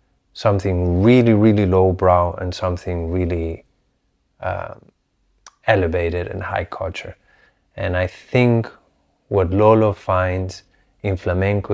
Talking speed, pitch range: 105 wpm, 90-100 Hz